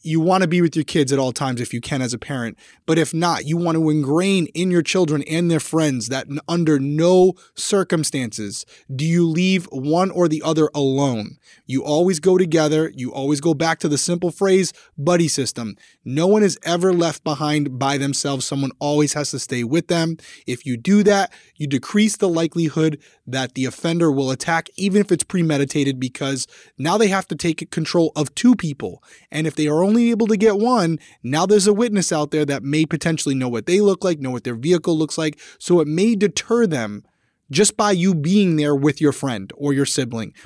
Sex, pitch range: male, 140-175 Hz